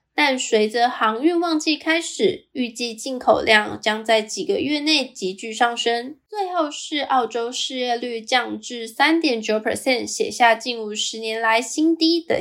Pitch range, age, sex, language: 230-305 Hz, 10-29, female, Chinese